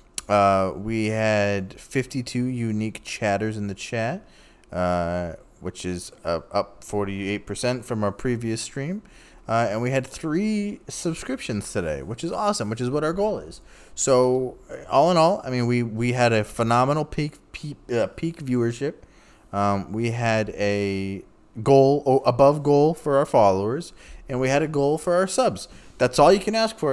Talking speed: 170 wpm